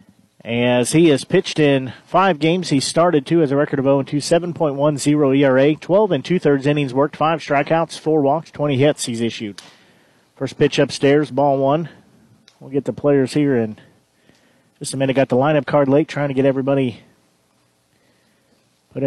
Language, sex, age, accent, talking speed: English, male, 40-59, American, 180 wpm